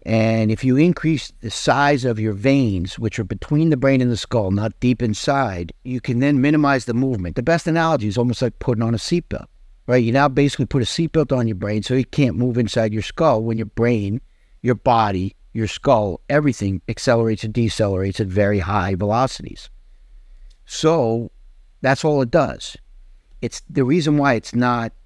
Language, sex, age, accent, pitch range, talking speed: English, male, 50-69, American, 105-140 Hz, 190 wpm